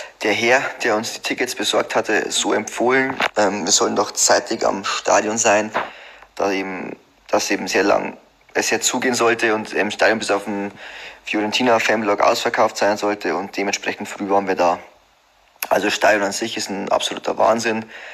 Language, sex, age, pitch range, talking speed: German, male, 20-39, 100-115 Hz, 170 wpm